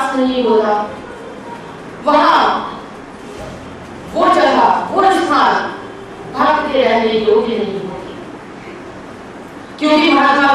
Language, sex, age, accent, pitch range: Hindi, female, 30-49, native, 220-295 Hz